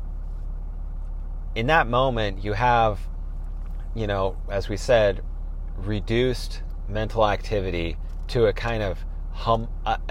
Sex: male